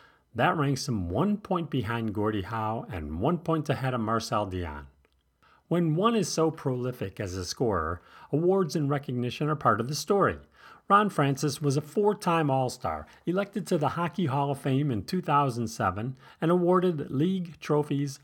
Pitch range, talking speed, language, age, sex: 110-160 Hz, 165 wpm, English, 40-59, male